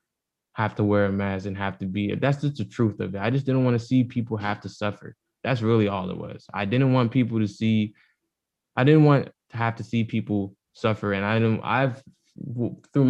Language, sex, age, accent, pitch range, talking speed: English, male, 20-39, American, 100-115 Hz, 230 wpm